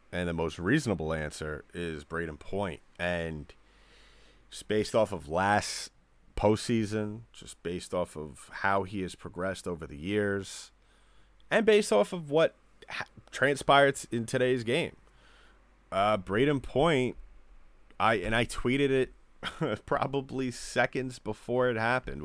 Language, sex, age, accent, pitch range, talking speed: English, male, 30-49, American, 80-110 Hz, 130 wpm